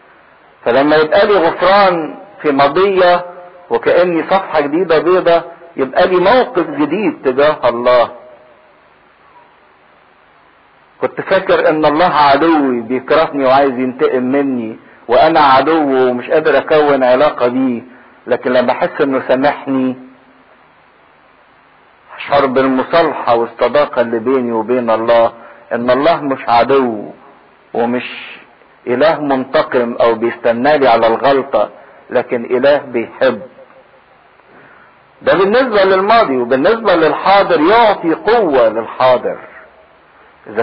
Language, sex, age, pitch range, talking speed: English, male, 50-69, 125-165 Hz, 100 wpm